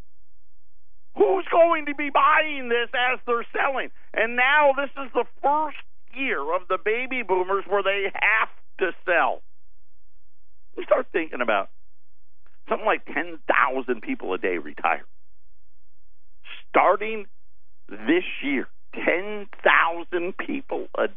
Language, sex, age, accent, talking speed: English, male, 50-69, American, 120 wpm